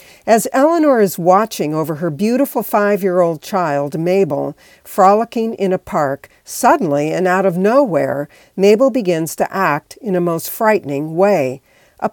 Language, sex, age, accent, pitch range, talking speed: English, female, 60-79, American, 160-210 Hz, 145 wpm